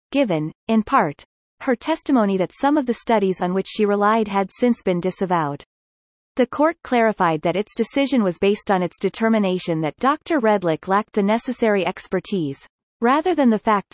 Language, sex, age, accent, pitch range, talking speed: English, female, 30-49, American, 185-240 Hz, 170 wpm